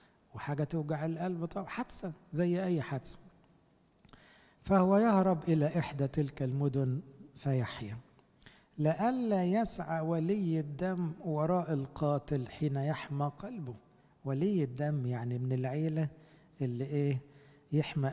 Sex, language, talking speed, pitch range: male, English, 105 wpm, 140-170 Hz